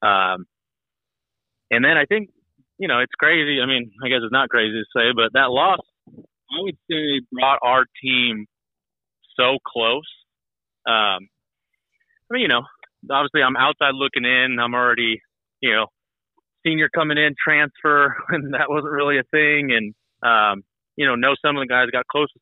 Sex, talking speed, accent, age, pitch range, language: male, 175 wpm, American, 30-49, 115-140 Hz, English